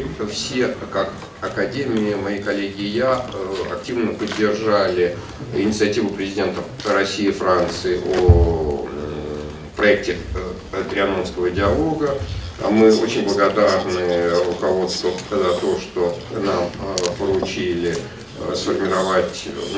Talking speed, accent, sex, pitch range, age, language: 85 wpm, native, male, 90-115 Hz, 50-69, Russian